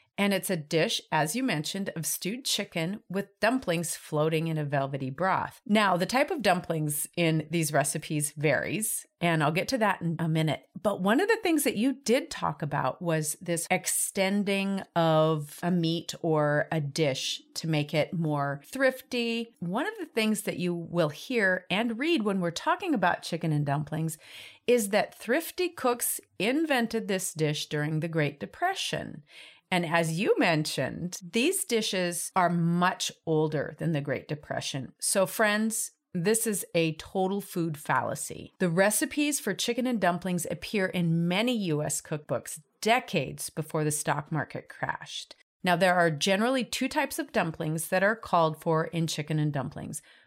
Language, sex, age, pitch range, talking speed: English, female, 40-59, 155-220 Hz, 165 wpm